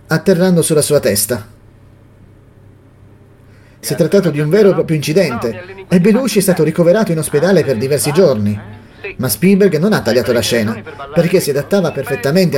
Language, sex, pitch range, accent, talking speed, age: Italian, male, 110-185 Hz, native, 160 wpm, 30-49